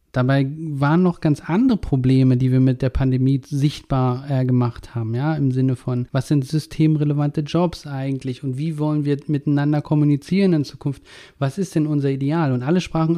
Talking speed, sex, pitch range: 180 wpm, male, 135-160 Hz